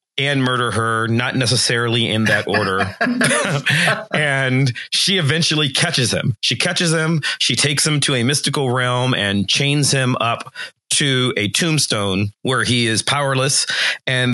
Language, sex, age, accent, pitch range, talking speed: English, male, 40-59, American, 115-145 Hz, 145 wpm